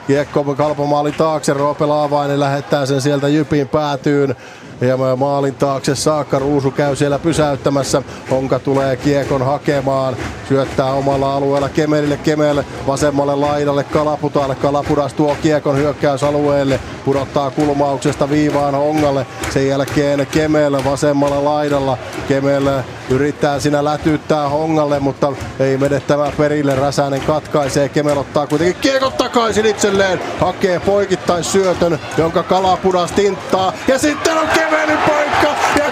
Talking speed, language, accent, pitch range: 120 wpm, Finnish, native, 140-210 Hz